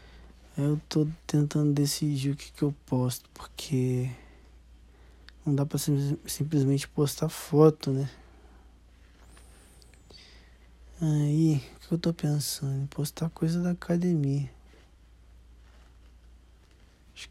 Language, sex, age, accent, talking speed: Portuguese, male, 20-39, Brazilian, 100 wpm